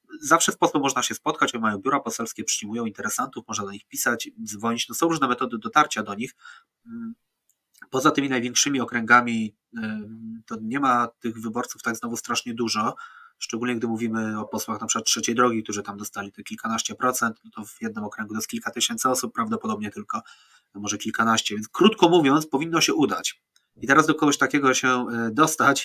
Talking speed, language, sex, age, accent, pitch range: 185 wpm, Polish, male, 20-39, native, 115-165 Hz